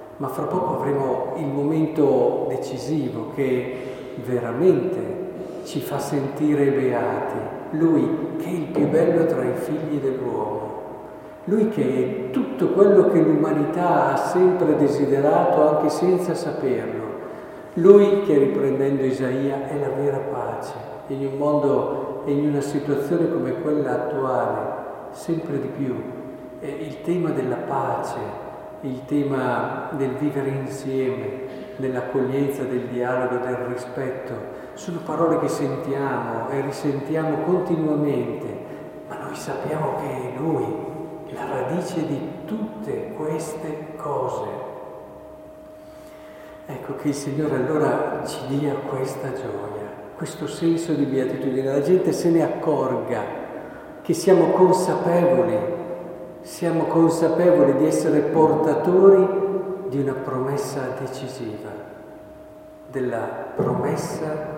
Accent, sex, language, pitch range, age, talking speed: native, male, Italian, 130-165 Hz, 50-69, 115 wpm